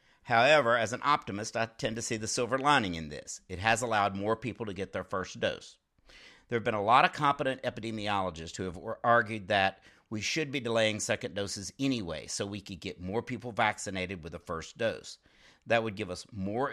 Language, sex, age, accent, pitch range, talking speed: English, male, 50-69, American, 95-125 Hz, 210 wpm